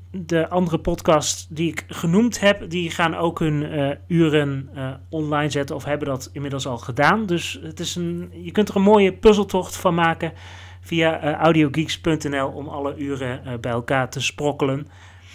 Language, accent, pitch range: Dutch, Dutch, 130-175 Hz